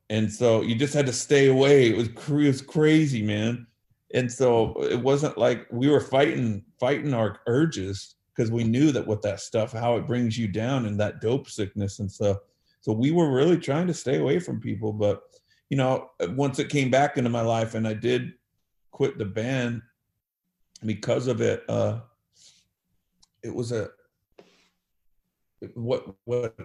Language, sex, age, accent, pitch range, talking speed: English, male, 40-59, American, 110-135 Hz, 175 wpm